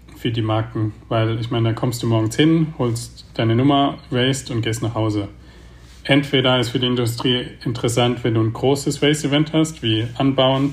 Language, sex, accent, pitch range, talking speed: German, male, German, 110-125 Hz, 185 wpm